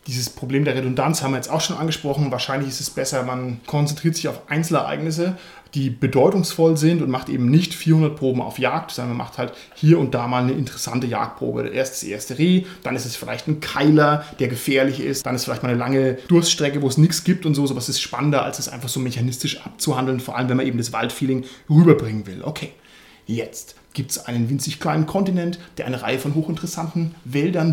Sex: male